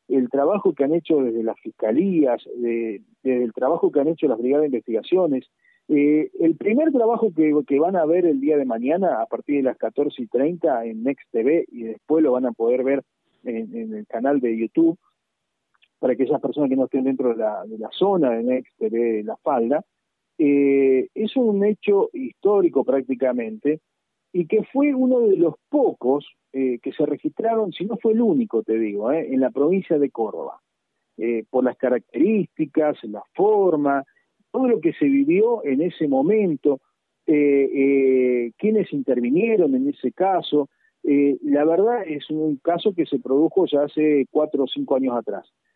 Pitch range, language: 130-205 Hz, Spanish